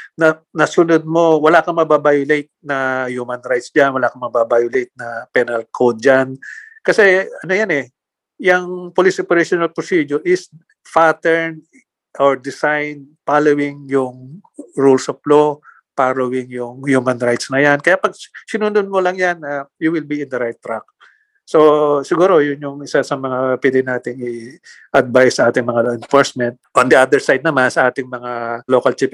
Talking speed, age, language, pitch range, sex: 160 wpm, 50-69, English, 125-155 Hz, male